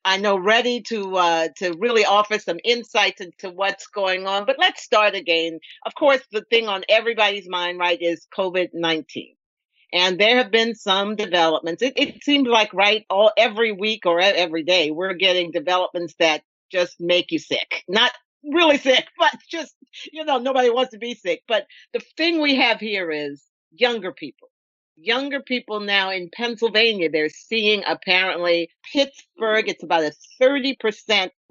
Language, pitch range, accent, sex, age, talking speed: English, 180-245 Hz, American, female, 50-69, 165 wpm